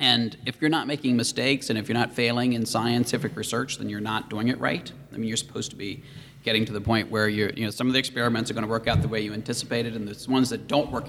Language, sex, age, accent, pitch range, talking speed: English, male, 40-59, American, 110-135 Hz, 275 wpm